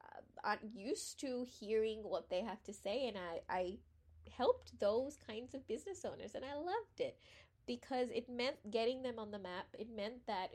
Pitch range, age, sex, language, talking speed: 185-225 Hz, 20-39, female, English, 190 wpm